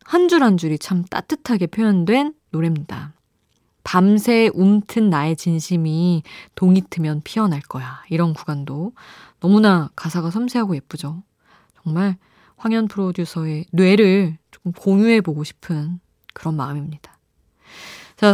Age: 20-39